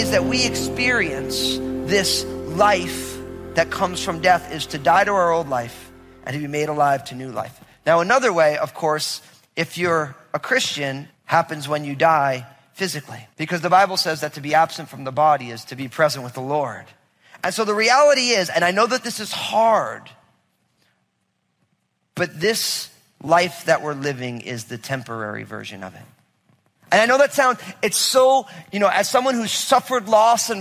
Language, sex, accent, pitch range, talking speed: English, male, American, 135-210 Hz, 190 wpm